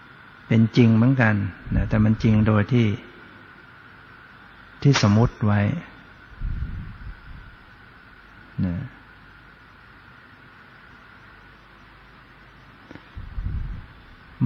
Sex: male